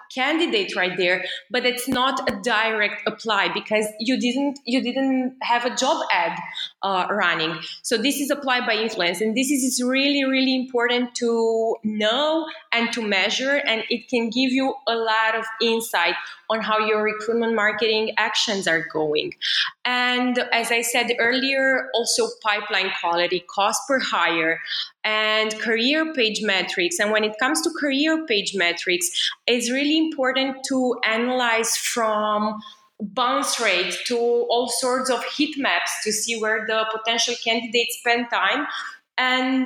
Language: English